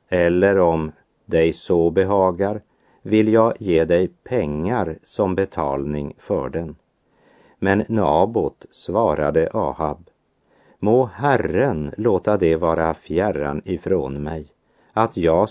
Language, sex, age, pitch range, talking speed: Swedish, male, 50-69, 85-105 Hz, 110 wpm